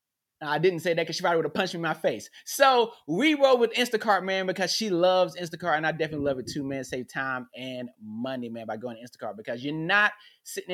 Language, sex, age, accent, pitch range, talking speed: English, male, 20-39, American, 140-185 Hz, 245 wpm